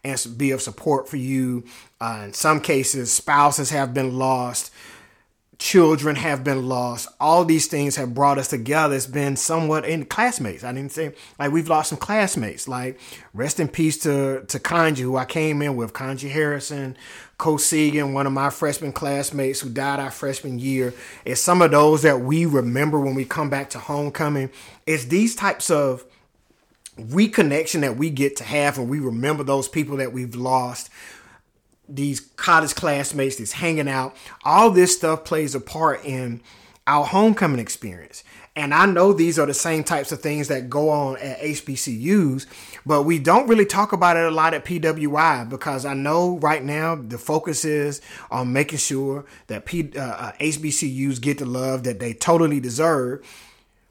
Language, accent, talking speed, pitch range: English, American, 175 wpm, 130-155 Hz